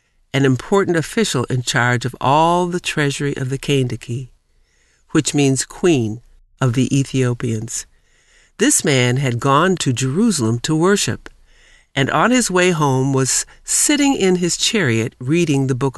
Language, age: Chinese, 60-79